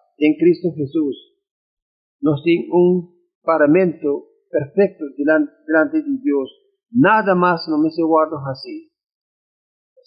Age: 50-69